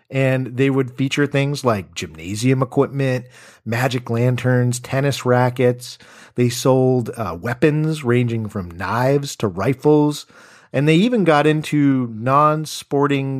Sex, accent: male, American